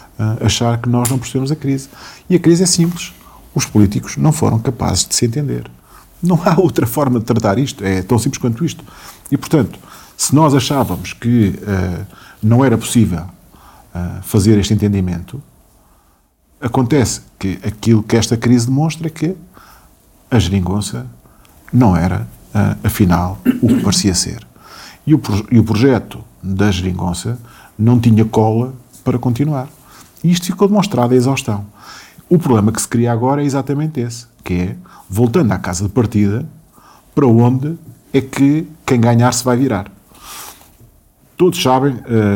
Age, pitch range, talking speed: 50-69, 100-135 Hz, 150 wpm